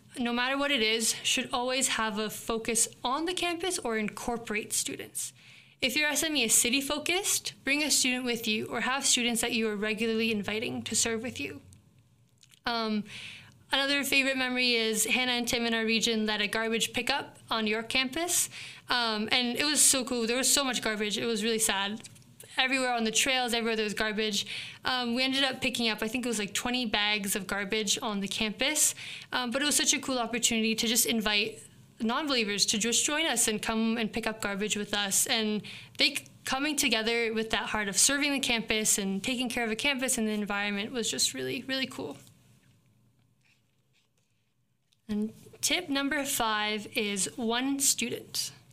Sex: female